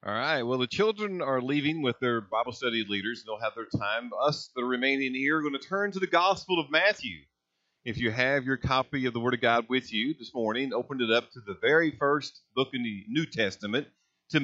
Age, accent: 40-59, American